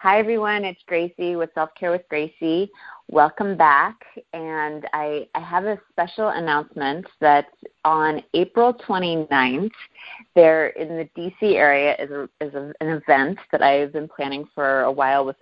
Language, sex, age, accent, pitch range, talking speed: English, female, 30-49, American, 135-165 Hz, 150 wpm